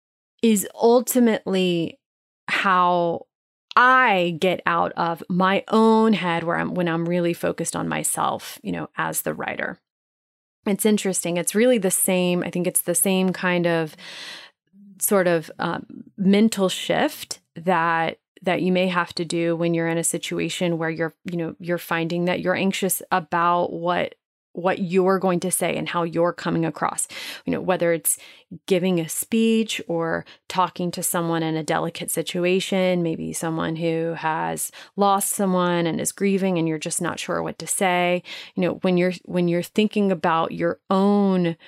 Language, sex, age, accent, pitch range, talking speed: English, female, 30-49, American, 170-195 Hz, 165 wpm